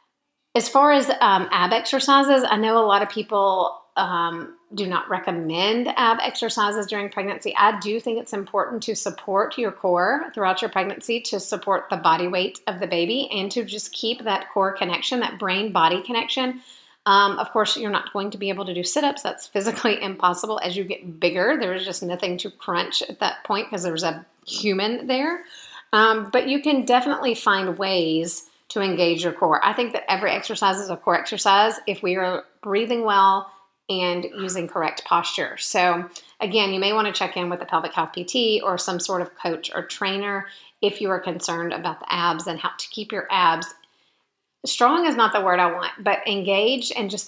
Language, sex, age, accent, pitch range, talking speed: English, female, 40-59, American, 180-225 Hz, 200 wpm